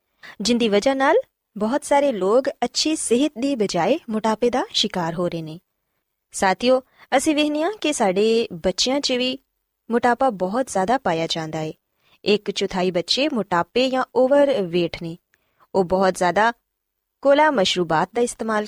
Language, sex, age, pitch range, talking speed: Punjabi, female, 20-39, 190-270 Hz, 140 wpm